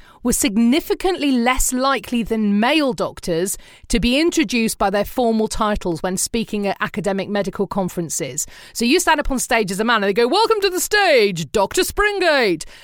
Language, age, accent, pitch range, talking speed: English, 30-49, British, 200-285 Hz, 180 wpm